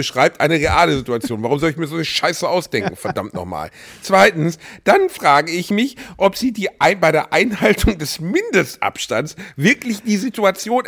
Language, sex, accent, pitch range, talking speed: German, male, German, 155-245 Hz, 170 wpm